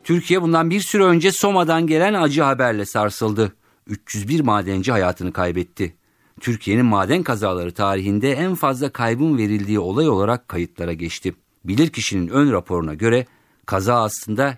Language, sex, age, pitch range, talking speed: Turkish, male, 50-69, 105-170 Hz, 135 wpm